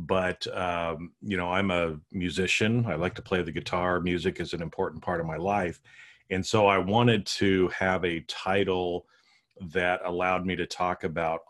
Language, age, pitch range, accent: English, 40-59, 85-100 Hz, American